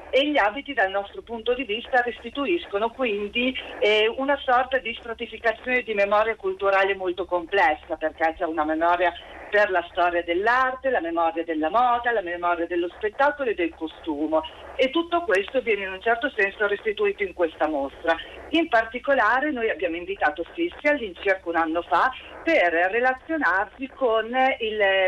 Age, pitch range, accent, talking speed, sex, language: 40-59, 175-250 Hz, native, 155 wpm, female, Italian